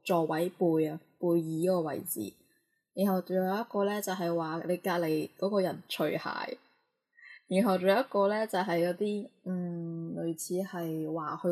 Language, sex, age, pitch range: Chinese, female, 10-29, 165-195 Hz